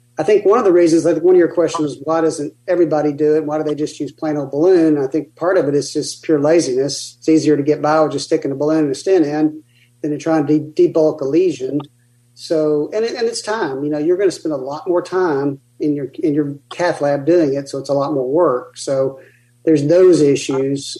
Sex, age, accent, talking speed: male, 40-59, American, 255 wpm